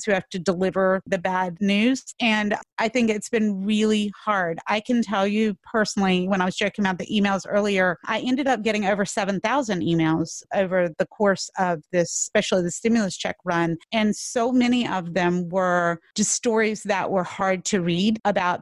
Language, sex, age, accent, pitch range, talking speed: English, female, 30-49, American, 180-215 Hz, 185 wpm